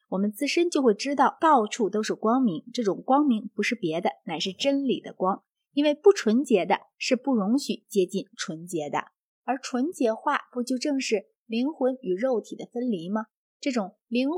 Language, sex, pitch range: Chinese, female, 205-280 Hz